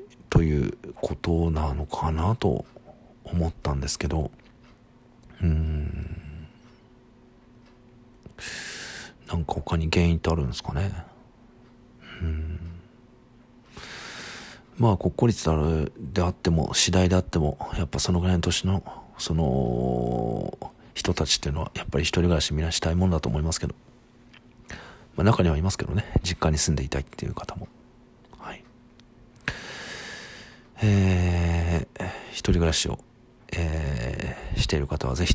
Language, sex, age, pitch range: Japanese, male, 50-69, 80-110 Hz